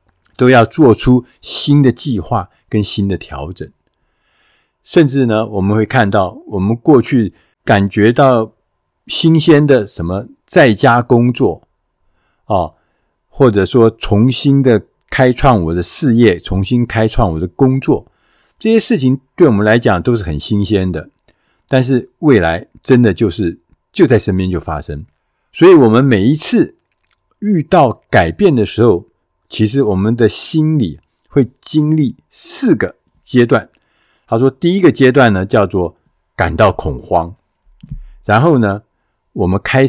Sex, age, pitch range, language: male, 50-69, 95-130 Hz, Chinese